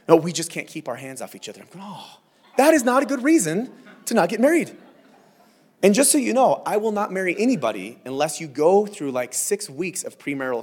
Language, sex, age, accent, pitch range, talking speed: English, male, 30-49, American, 130-190 Hz, 235 wpm